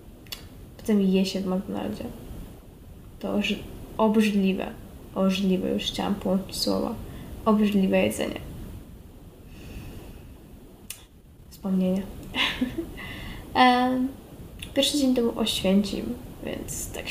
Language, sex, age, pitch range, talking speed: Polish, female, 10-29, 200-235 Hz, 75 wpm